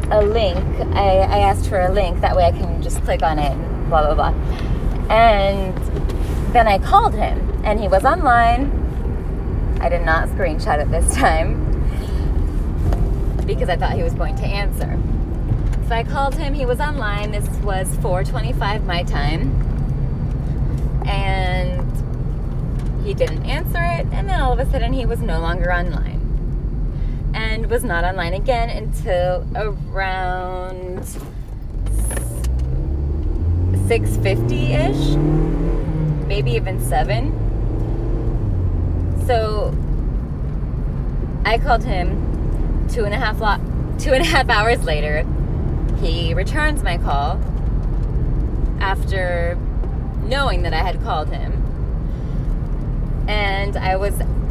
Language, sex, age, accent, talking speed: English, female, 20-39, American, 120 wpm